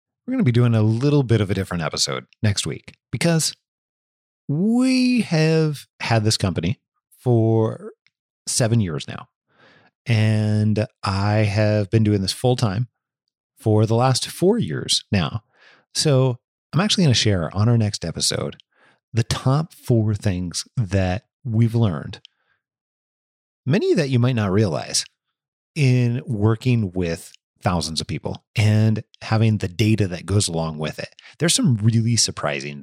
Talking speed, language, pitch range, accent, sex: 145 wpm, English, 100-130 Hz, American, male